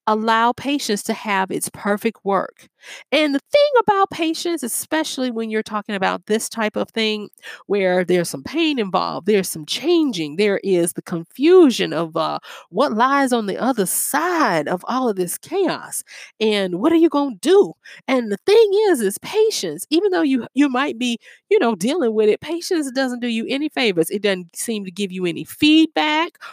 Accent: American